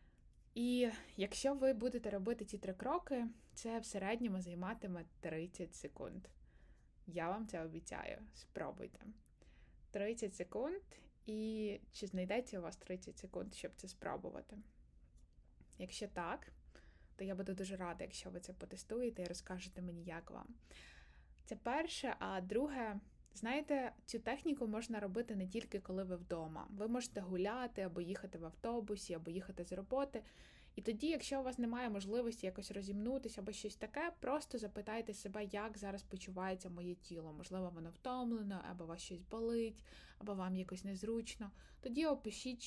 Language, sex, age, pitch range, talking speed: Ukrainian, female, 20-39, 175-230 Hz, 150 wpm